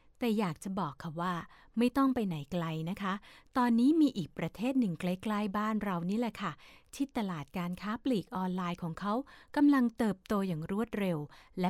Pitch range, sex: 170-240 Hz, female